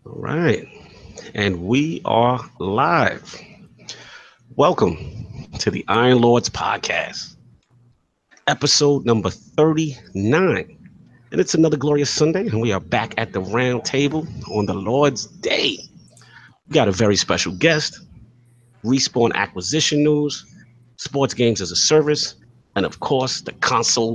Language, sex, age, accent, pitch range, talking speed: English, male, 30-49, American, 100-135 Hz, 125 wpm